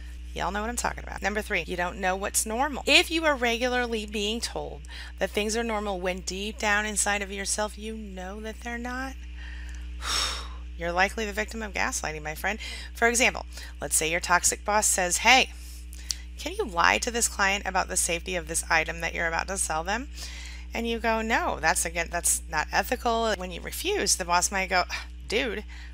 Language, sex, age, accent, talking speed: English, female, 30-49, American, 200 wpm